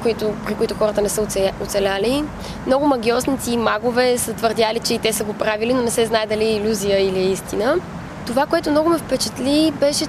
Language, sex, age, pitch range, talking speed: Bulgarian, female, 20-39, 225-280 Hz, 200 wpm